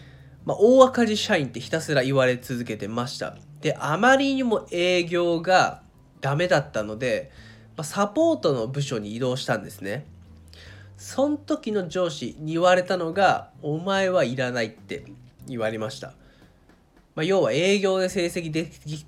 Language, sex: Japanese, male